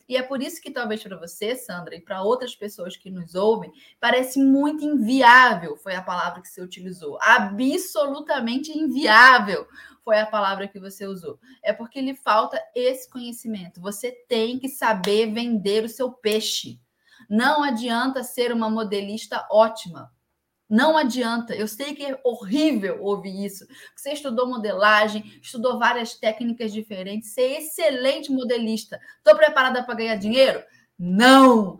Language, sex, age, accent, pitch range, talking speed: Portuguese, female, 10-29, Brazilian, 205-275 Hz, 150 wpm